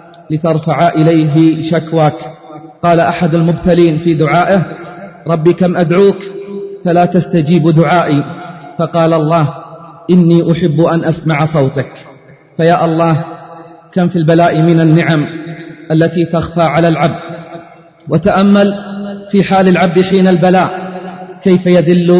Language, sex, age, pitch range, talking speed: Arabic, male, 30-49, 165-175 Hz, 110 wpm